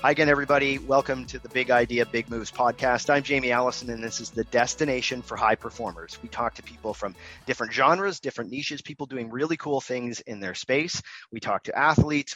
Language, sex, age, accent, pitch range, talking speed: English, male, 30-49, American, 110-135 Hz, 210 wpm